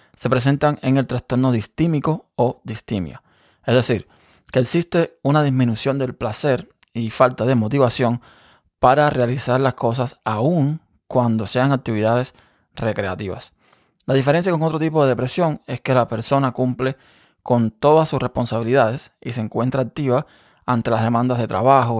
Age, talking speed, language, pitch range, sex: 20-39, 145 wpm, Spanish, 115-140 Hz, male